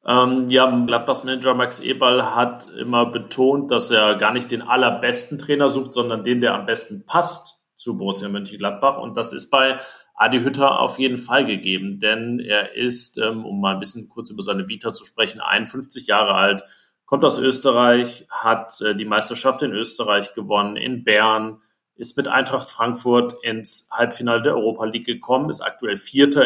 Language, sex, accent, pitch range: German, male, German, 110-135 Hz